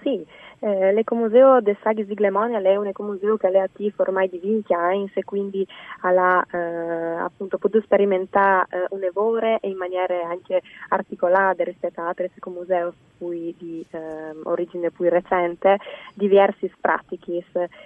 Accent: native